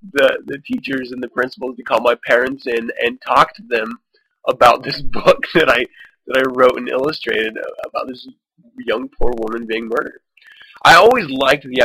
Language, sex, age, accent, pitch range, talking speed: English, male, 20-39, American, 120-200 Hz, 180 wpm